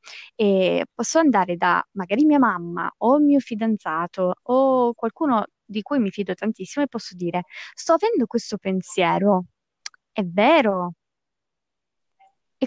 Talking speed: 130 wpm